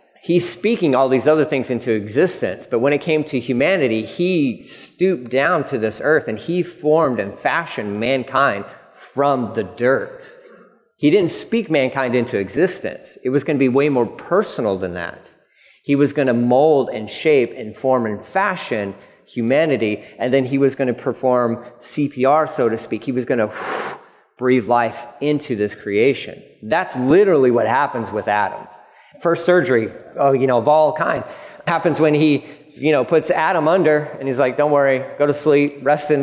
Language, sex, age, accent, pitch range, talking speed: English, male, 30-49, American, 125-155 Hz, 180 wpm